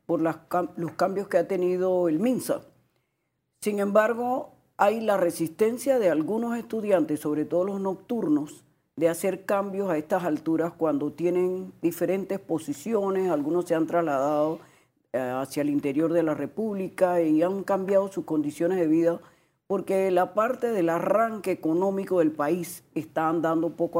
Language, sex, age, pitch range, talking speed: Spanish, female, 40-59, 155-195 Hz, 145 wpm